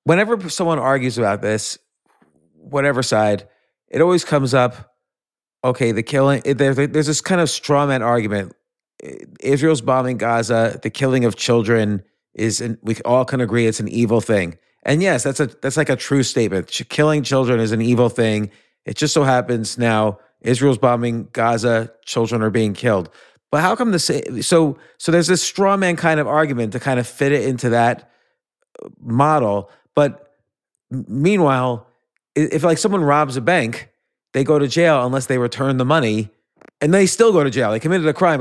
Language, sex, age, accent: English, male, 30-49, American